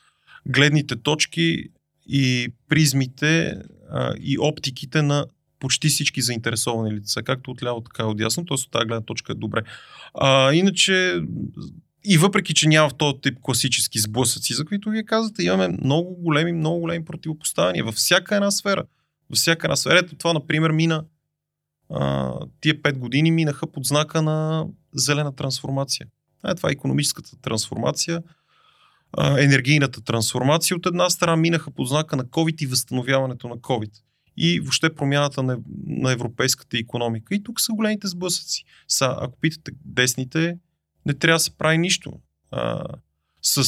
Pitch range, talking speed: 125-160 Hz, 145 wpm